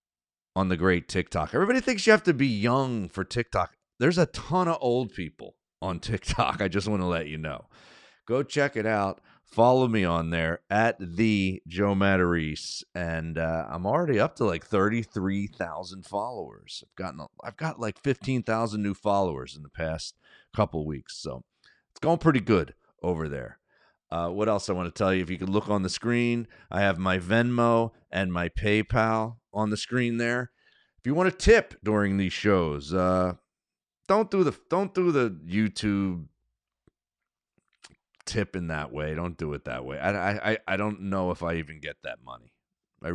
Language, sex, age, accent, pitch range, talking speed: English, male, 40-59, American, 90-115 Hz, 190 wpm